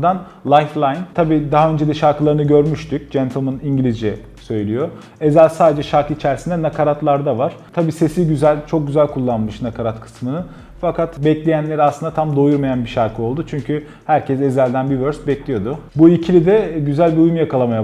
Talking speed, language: 150 wpm, Turkish